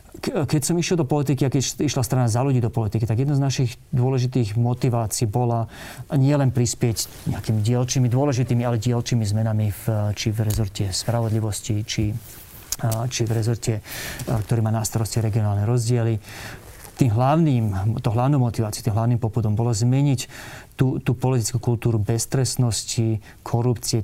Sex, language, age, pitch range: male, Slovak, 30-49, 110-125 Hz